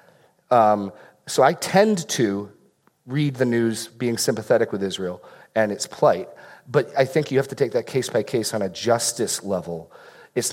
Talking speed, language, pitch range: 175 wpm, English, 105-140 Hz